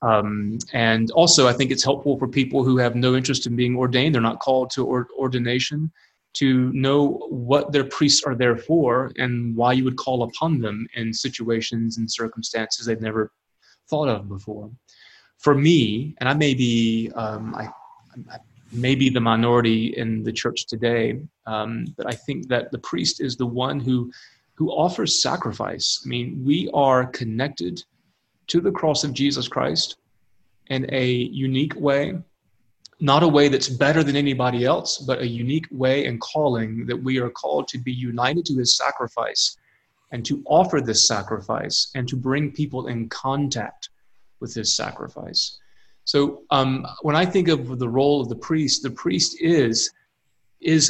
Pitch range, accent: 115-140 Hz, American